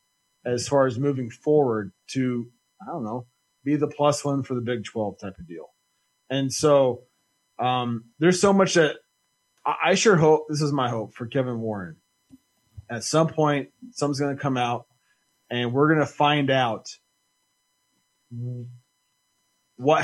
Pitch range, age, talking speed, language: 125-150 Hz, 30-49, 160 wpm, English